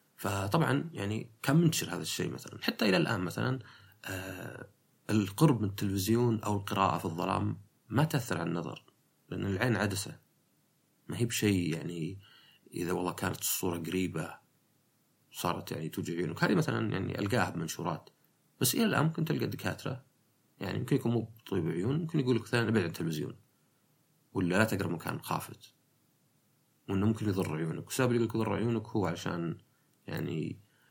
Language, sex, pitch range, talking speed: Arabic, male, 95-120 Hz, 150 wpm